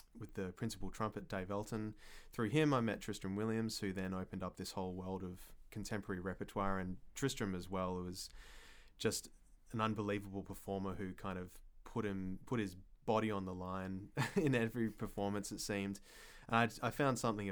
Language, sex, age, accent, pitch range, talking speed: English, male, 20-39, Australian, 95-110 Hz, 180 wpm